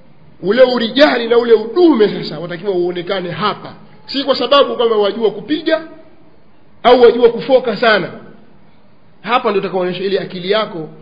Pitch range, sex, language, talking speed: 185-260 Hz, male, Swahili, 135 wpm